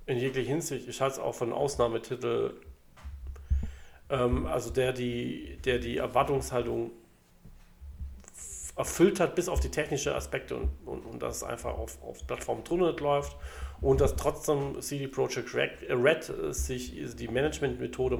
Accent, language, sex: German, German, male